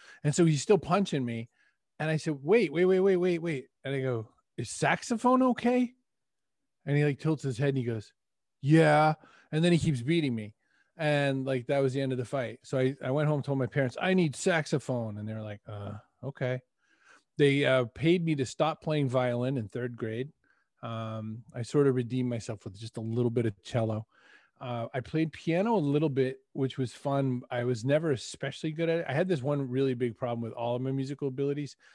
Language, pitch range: English, 115-145 Hz